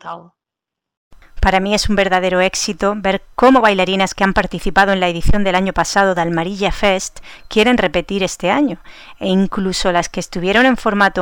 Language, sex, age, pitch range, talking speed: Spanish, female, 30-49, 180-215 Hz, 170 wpm